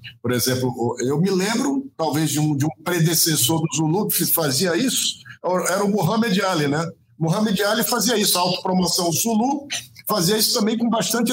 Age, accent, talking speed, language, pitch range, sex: 50-69, Brazilian, 175 wpm, Portuguese, 135-220 Hz, male